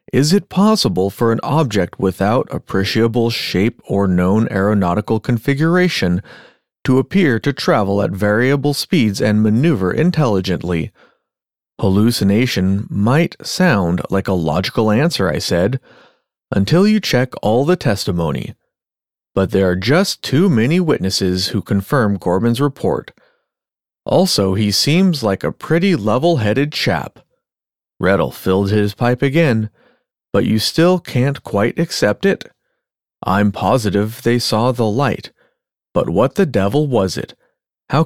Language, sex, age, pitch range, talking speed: English, male, 30-49, 100-145 Hz, 130 wpm